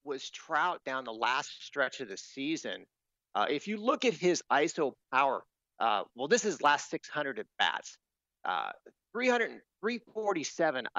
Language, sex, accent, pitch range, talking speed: English, male, American, 125-200 Hz, 155 wpm